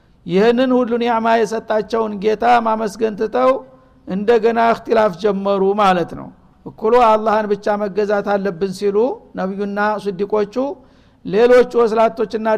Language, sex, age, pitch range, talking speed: Amharic, male, 60-79, 200-225 Hz, 105 wpm